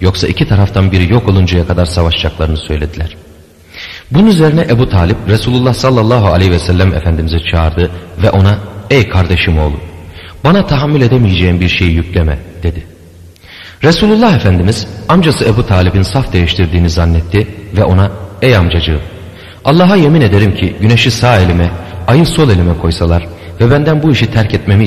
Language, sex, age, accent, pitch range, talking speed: Turkish, male, 40-59, native, 85-110 Hz, 145 wpm